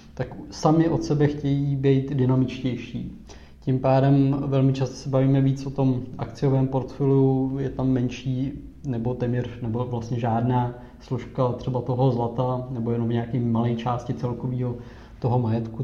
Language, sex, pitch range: Czech, male, 120-135 Hz